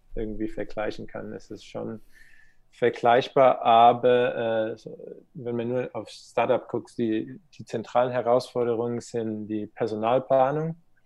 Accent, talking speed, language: German, 120 wpm, German